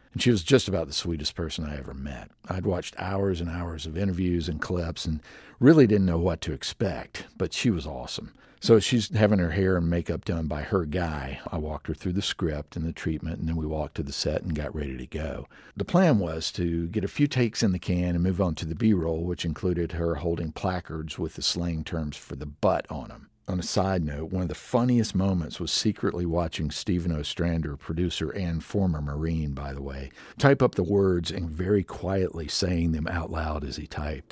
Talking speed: 225 wpm